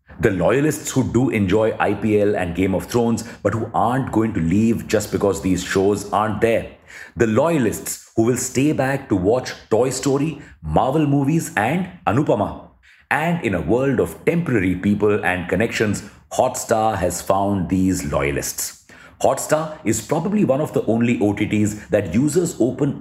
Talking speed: 160 wpm